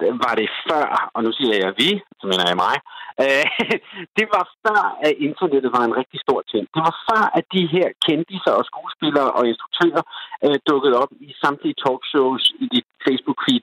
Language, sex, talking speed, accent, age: Danish, male, 180 wpm, native, 50-69